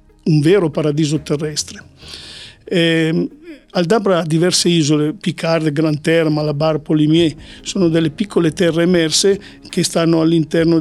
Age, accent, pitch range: 50-69, native, 155-185 Hz